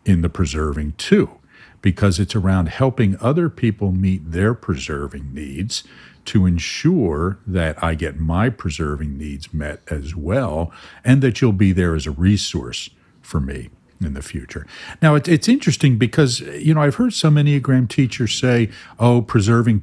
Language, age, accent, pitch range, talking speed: English, 50-69, American, 80-105 Hz, 160 wpm